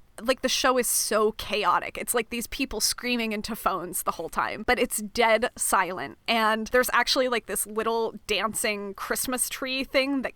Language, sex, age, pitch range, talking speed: English, female, 20-39, 200-245 Hz, 180 wpm